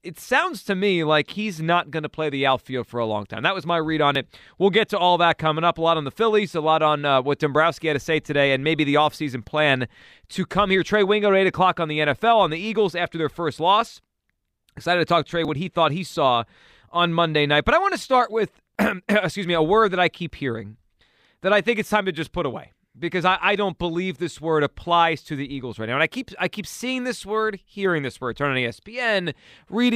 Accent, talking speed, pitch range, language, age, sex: American, 260 wpm, 150-200 Hz, English, 30-49, male